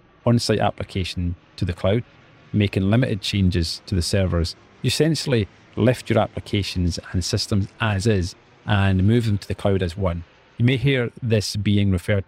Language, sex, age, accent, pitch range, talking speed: English, male, 40-59, British, 90-115 Hz, 165 wpm